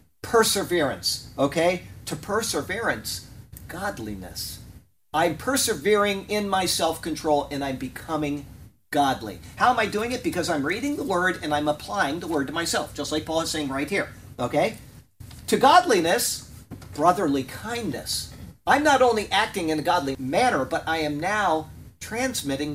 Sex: male